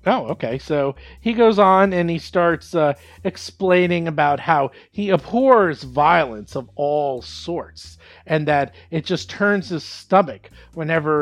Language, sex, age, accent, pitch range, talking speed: English, male, 40-59, American, 130-195 Hz, 145 wpm